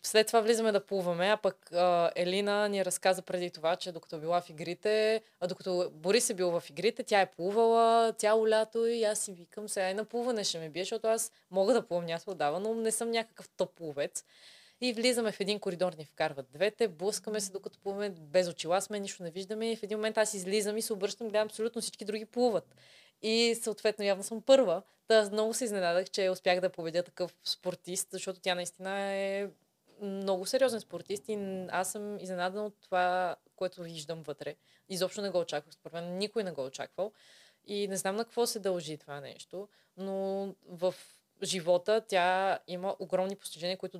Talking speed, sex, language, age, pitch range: 200 wpm, female, Bulgarian, 20-39, 175-215 Hz